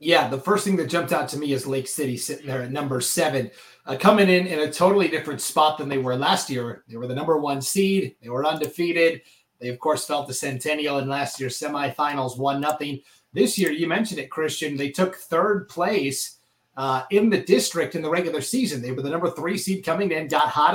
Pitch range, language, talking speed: 135-175 Hz, English, 230 wpm